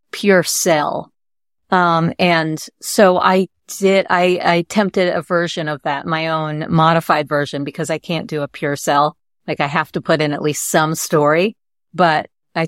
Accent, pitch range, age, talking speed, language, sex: American, 155-185 Hz, 40-59, 175 wpm, English, female